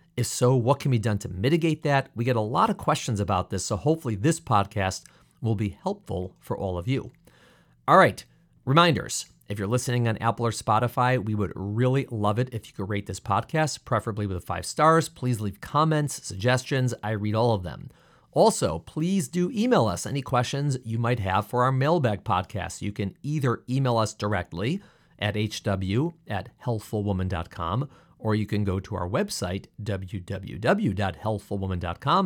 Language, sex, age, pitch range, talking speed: English, male, 40-59, 100-135 Hz, 175 wpm